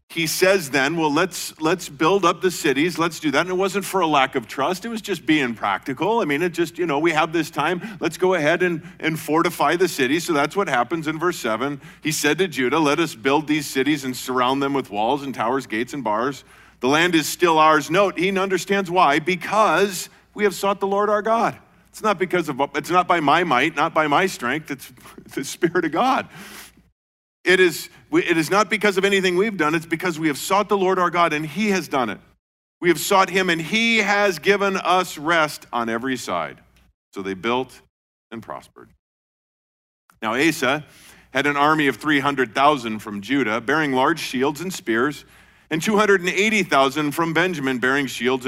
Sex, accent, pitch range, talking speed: male, American, 135-185 Hz, 205 wpm